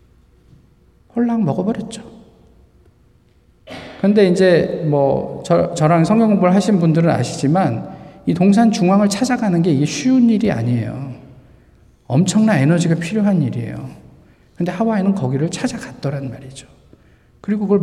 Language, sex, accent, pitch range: Korean, male, native, 130-190 Hz